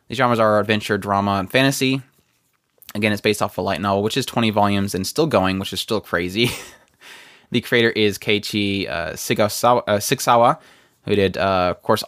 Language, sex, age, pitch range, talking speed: English, male, 20-39, 100-135 Hz, 185 wpm